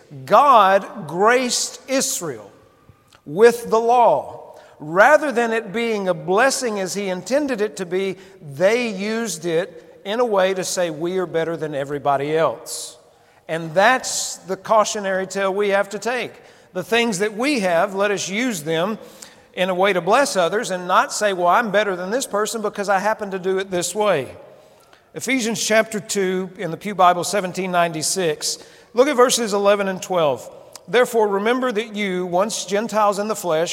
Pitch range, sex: 180-230 Hz, male